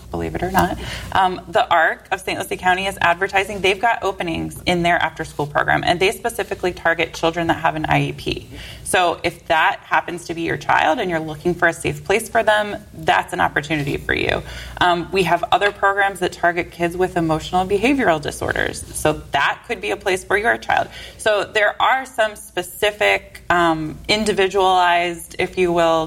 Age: 20-39